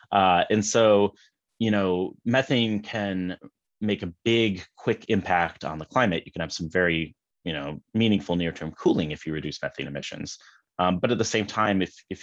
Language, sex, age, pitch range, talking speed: English, male, 30-49, 80-100 Hz, 185 wpm